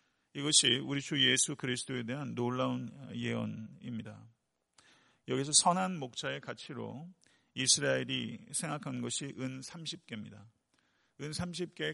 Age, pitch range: 50-69, 115-145 Hz